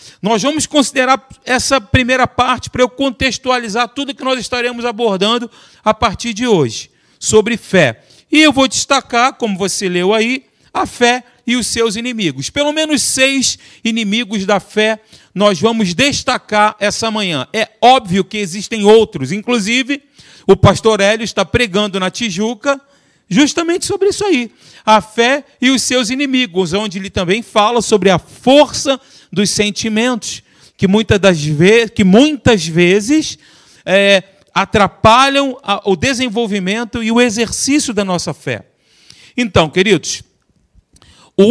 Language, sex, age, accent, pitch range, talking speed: Portuguese, male, 40-59, Brazilian, 200-260 Hz, 135 wpm